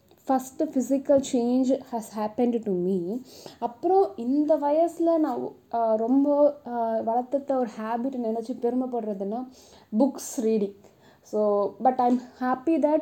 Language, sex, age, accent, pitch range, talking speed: Tamil, female, 20-39, native, 230-290 Hz, 110 wpm